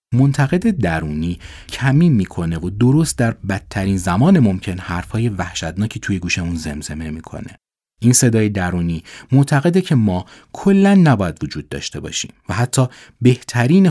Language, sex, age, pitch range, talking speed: Persian, male, 30-49, 85-125 Hz, 130 wpm